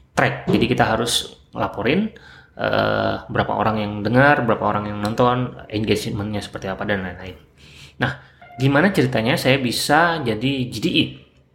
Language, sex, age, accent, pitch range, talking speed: Indonesian, male, 20-39, native, 100-130 Hz, 135 wpm